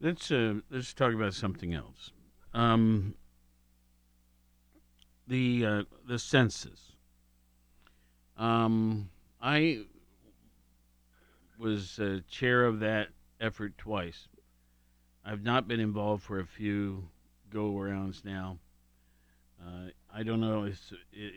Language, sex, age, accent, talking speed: English, male, 50-69, American, 100 wpm